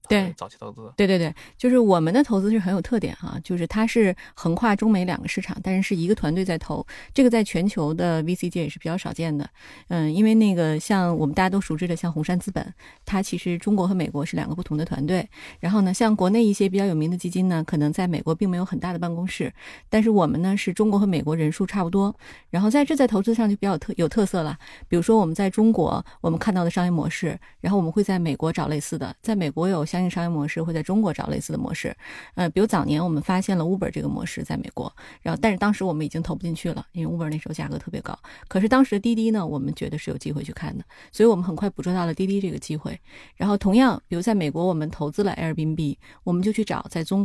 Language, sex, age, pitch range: Chinese, female, 30-49, 165-205 Hz